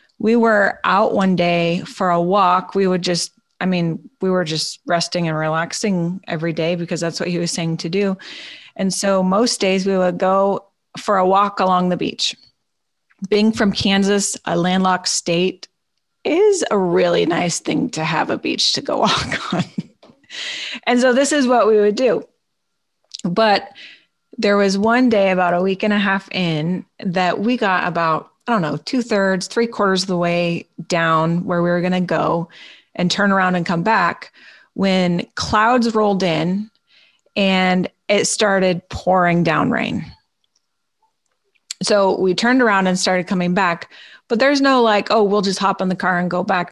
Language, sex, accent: English, female, American